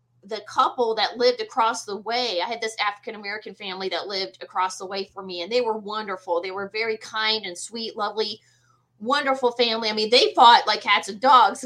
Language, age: English, 20-39